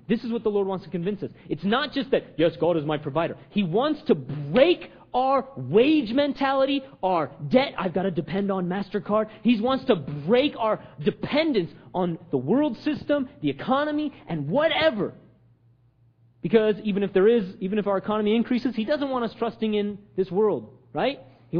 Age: 30-49